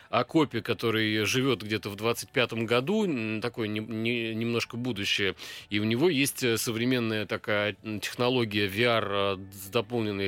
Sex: male